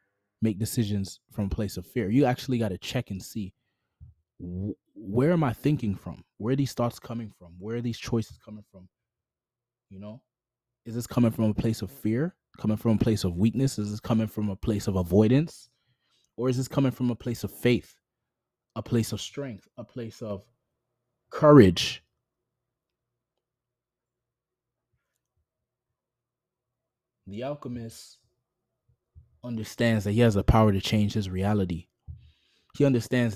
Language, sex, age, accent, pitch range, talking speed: English, male, 20-39, American, 100-125 Hz, 155 wpm